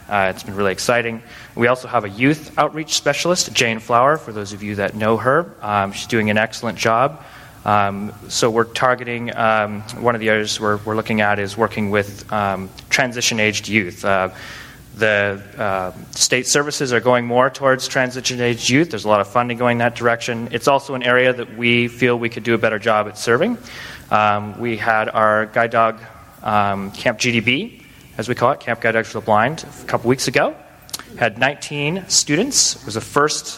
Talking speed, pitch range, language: 195 wpm, 105-125 Hz, English